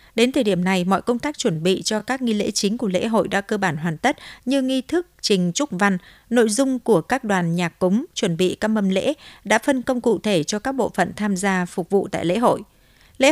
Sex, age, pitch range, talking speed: female, 60-79, 185-235 Hz, 255 wpm